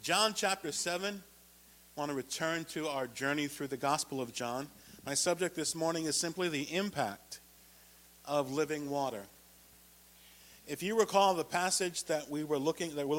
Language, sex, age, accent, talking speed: English, male, 50-69, American, 170 wpm